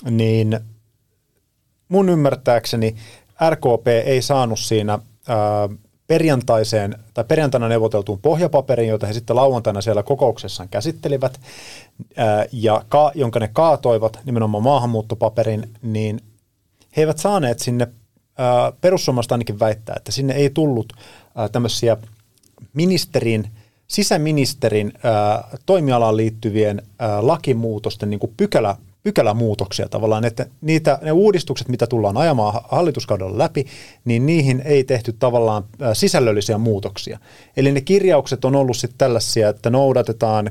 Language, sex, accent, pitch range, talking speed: Finnish, male, native, 110-135 Hz, 115 wpm